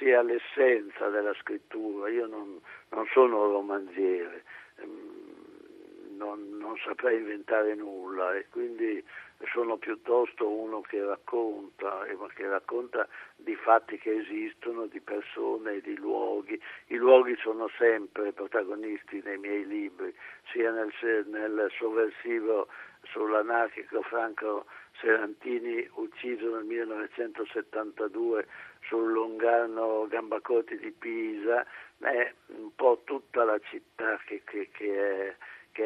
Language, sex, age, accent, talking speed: Italian, male, 60-79, native, 110 wpm